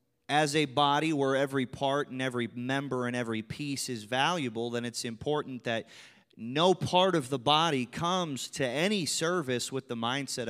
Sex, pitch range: male, 110-145 Hz